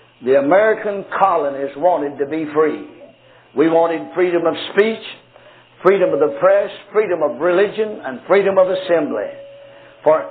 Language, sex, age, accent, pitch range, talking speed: English, male, 60-79, American, 165-210 Hz, 140 wpm